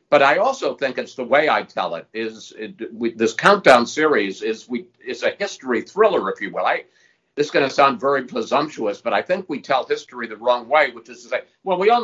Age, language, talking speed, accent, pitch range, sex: 50-69, English, 245 wpm, American, 115-155 Hz, male